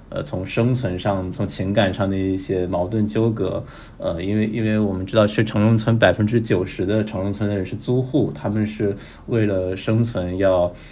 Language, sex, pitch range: Chinese, male, 95-110 Hz